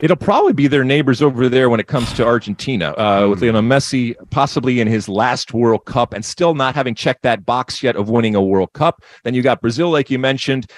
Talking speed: 240 wpm